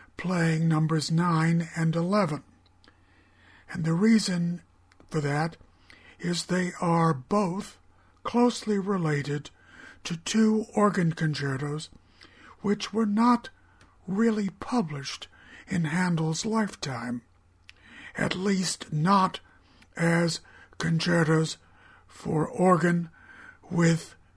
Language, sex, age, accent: English, male, 60-79, American